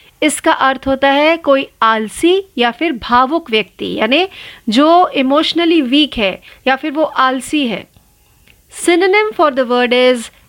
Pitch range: 240-295 Hz